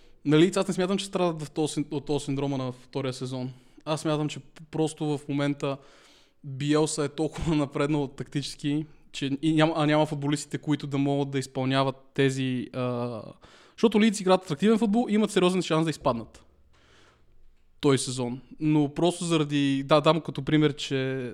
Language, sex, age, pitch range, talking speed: Bulgarian, male, 20-39, 135-165 Hz, 160 wpm